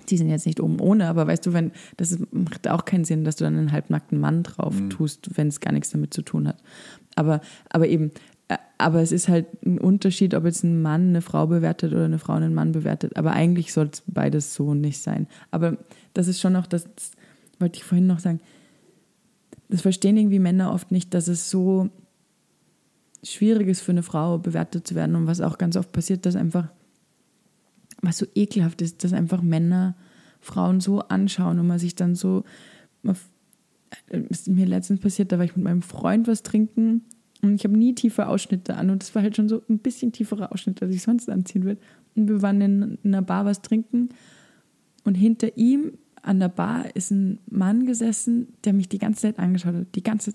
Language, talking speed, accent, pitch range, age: German, 210 wpm, German, 175-205 Hz, 20-39